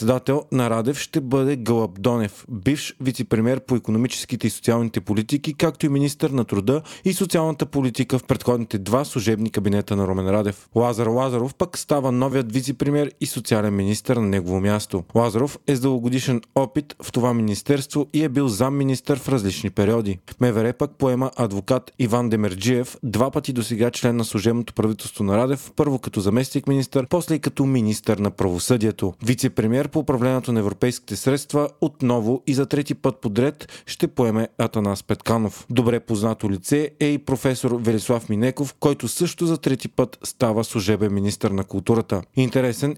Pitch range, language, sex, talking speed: 110-135 Hz, Bulgarian, male, 160 wpm